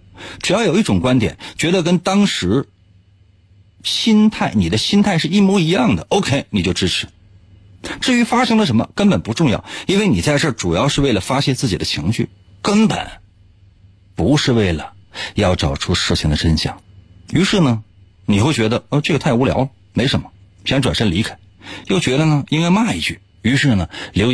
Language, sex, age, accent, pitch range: Chinese, male, 50-69, native, 90-125 Hz